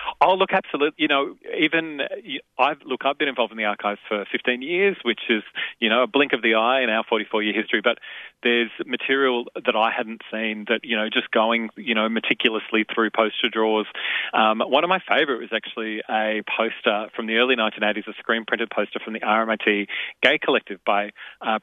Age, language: 30-49, English